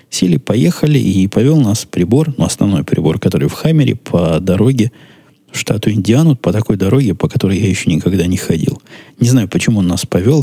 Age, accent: 20-39, native